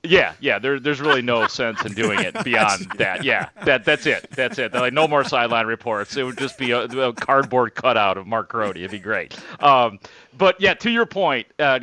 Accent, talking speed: American, 230 wpm